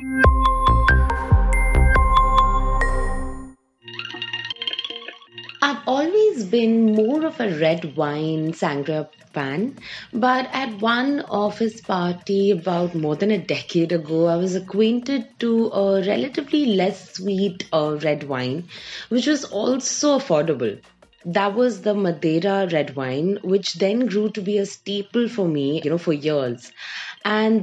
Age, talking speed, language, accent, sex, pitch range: 30-49, 120 wpm, English, Indian, female, 160-225 Hz